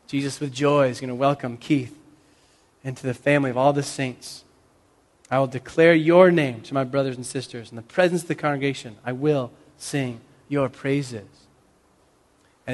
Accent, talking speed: American, 175 wpm